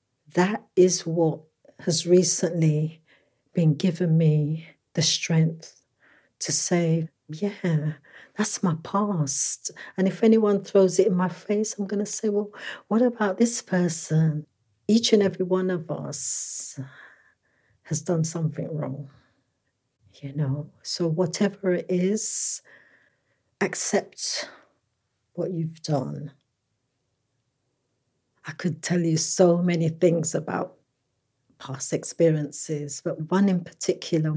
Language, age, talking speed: English, 60-79, 115 wpm